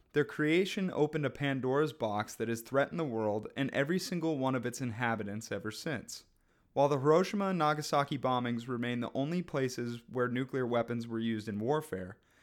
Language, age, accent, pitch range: English, 30-49, American, 120-165 Hz